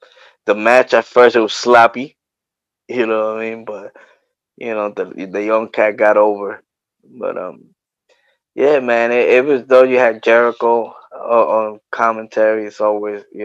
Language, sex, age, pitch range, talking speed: English, male, 20-39, 105-120 Hz, 170 wpm